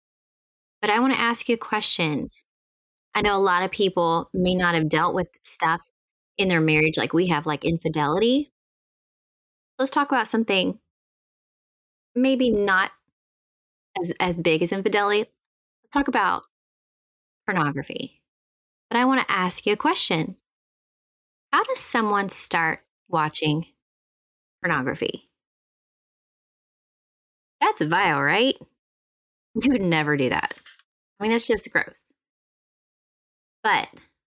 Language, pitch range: English, 160-235 Hz